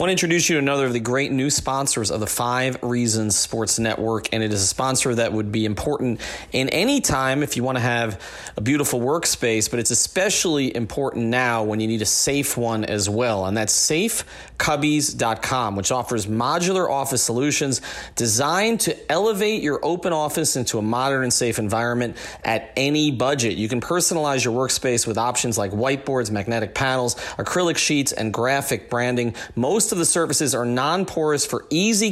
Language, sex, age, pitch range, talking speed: English, male, 30-49, 115-140 Hz, 180 wpm